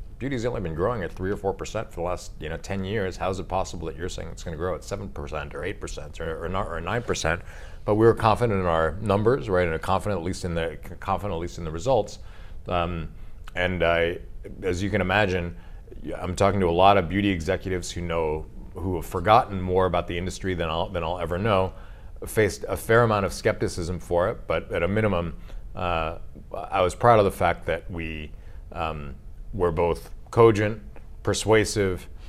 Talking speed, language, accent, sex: 210 wpm, English, American, male